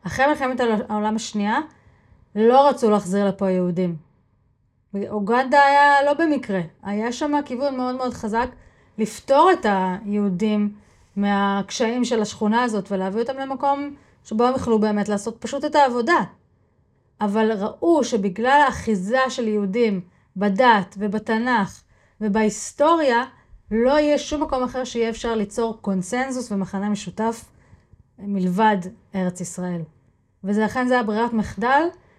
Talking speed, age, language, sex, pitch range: 120 wpm, 30-49, Hebrew, female, 195-250 Hz